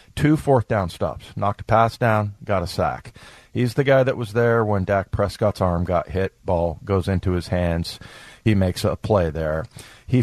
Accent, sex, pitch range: American, male, 95-120 Hz